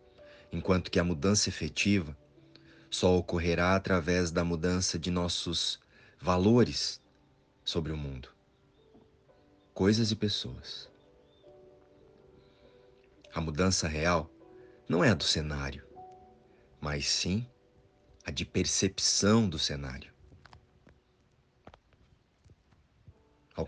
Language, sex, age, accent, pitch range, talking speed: Portuguese, male, 40-59, Brazilian, 80-100 Hz, 90 wpm